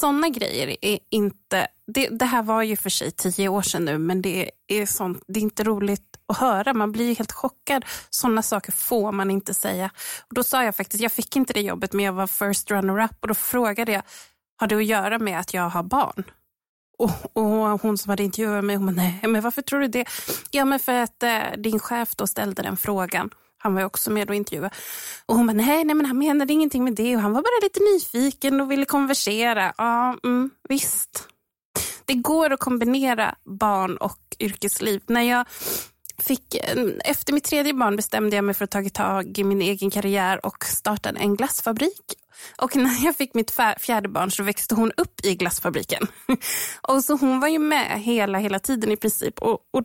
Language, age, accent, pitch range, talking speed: Swedish, 20-39, native, 200-260 Hz, 205 wpm